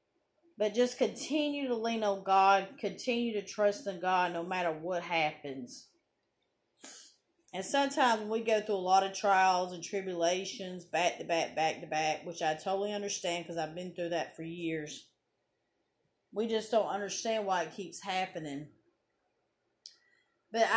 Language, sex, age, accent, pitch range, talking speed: English, female, 30-49, American, 180-225 Hz, 155 wpm